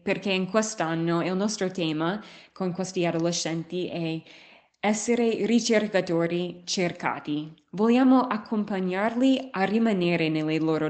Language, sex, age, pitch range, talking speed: Italian, female, 20-39, 160-215 Hz, 105 wpm